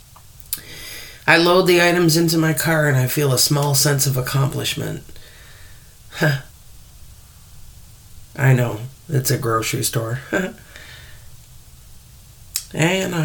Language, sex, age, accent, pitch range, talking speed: English, male, 40-59, American, 115-145 Hz, 100 wpm